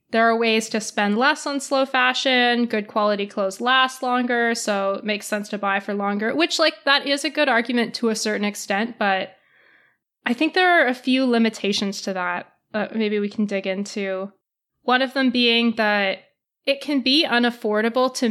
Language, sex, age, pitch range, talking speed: English, female, 20-39, 200-245 Hz, 195 wpm